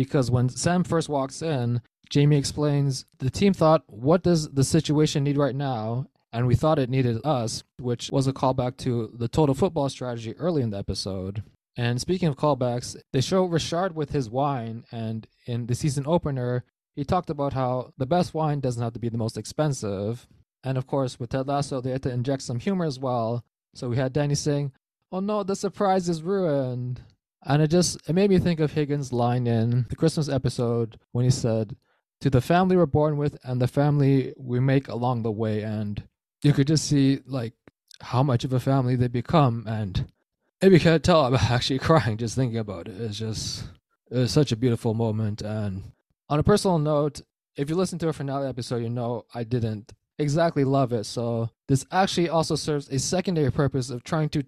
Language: English